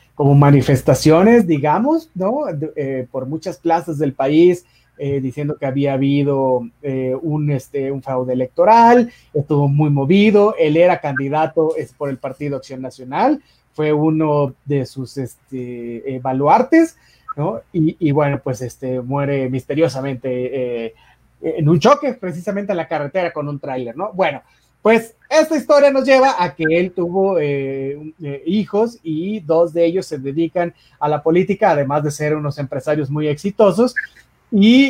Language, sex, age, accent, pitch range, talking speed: Spanish, male, 30-49, Mexican, 140-175 Hz, 150 wpm